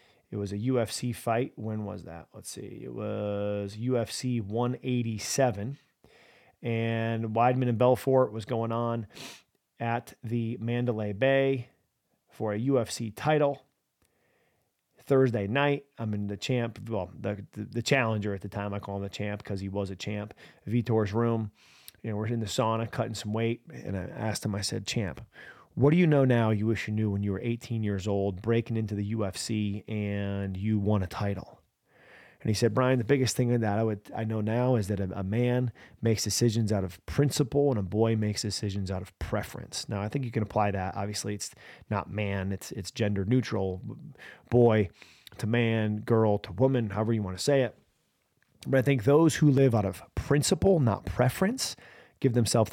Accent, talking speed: American, 190 wpm